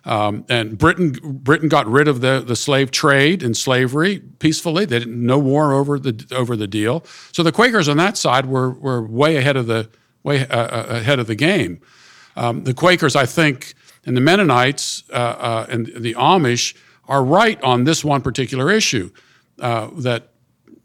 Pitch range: 120-165 Hz